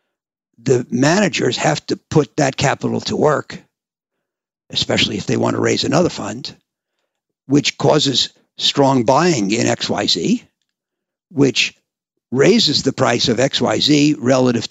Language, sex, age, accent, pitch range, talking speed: English, male, 60-79, American, 110-145 Hz, 120 wpm